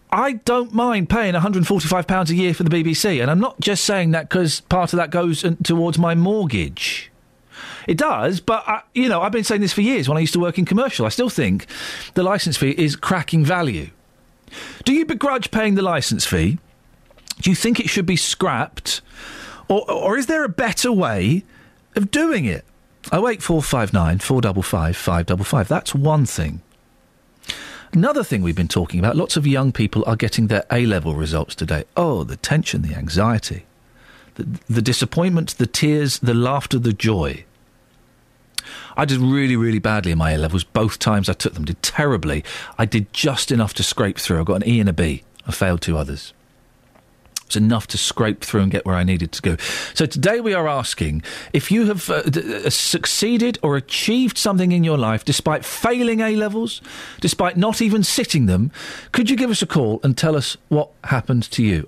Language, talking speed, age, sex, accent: English, 200 wpm, 40-59, male, British